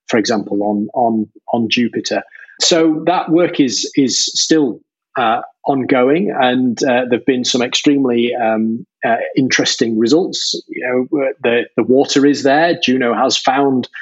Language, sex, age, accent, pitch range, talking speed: English, male, 30-49, British, 120-150 Hz, 150 wpm